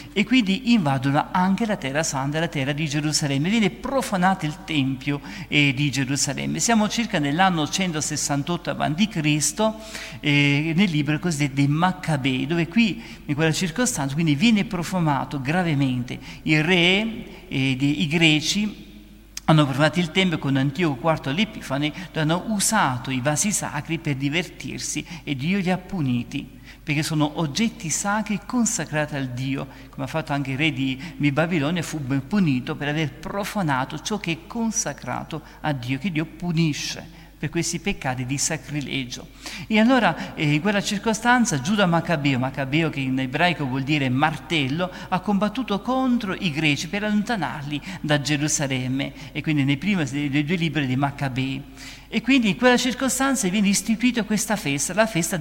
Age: 50-69